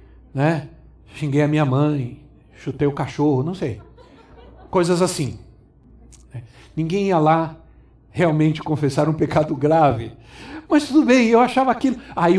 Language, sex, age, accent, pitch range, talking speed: Portuguese, male, 60-79, Brazilian, 145-220 Hz, 130 wpm